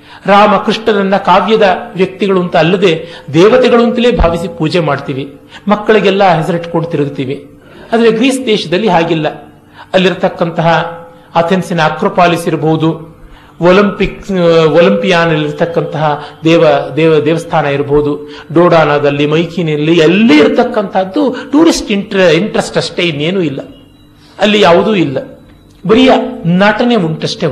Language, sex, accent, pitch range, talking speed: Kannada, male, native, 150-210 Hz, 85 wpm